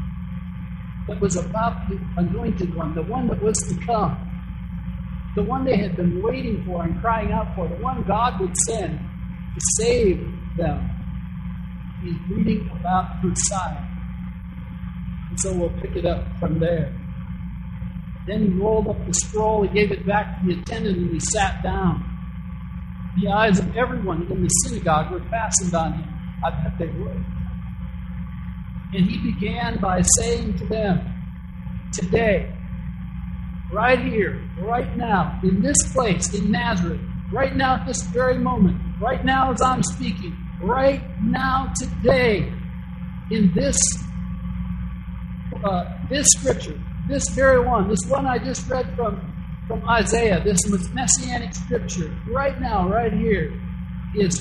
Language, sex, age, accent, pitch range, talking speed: English, male, 60-79, American, 170-215 Hz, 145 wpm